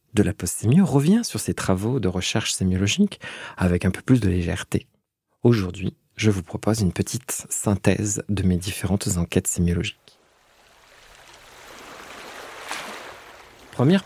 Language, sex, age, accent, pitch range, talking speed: French, male, 50-69, French, 100-130 Hz, 125 wpm